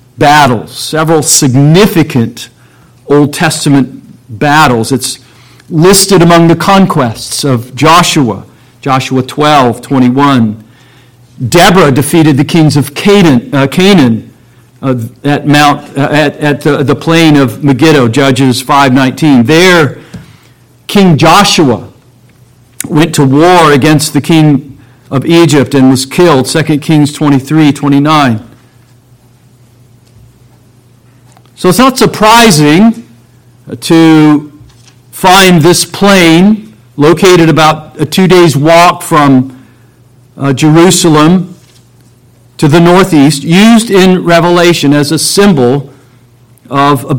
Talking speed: 95 wpm